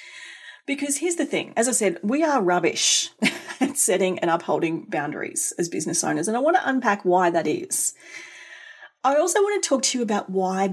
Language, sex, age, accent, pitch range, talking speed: English, female, 30-49, Australian, 180-270 Hz, 195 wpm